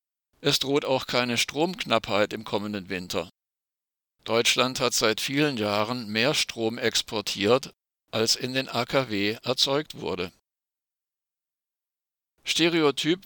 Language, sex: German, male